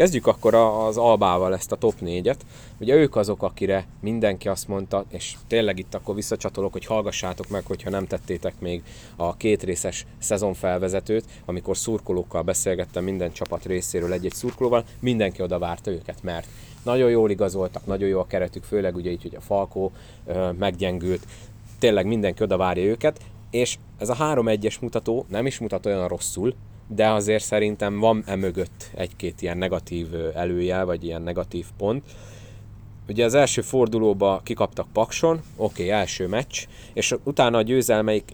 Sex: male